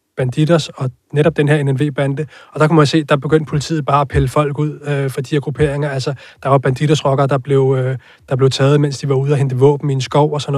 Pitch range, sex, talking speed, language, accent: 135-150 Hz, male, 255 wpm, Danish, native